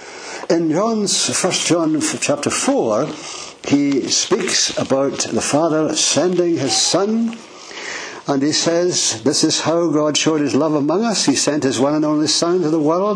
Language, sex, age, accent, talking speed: English, male, 60-79, British, 165 wpm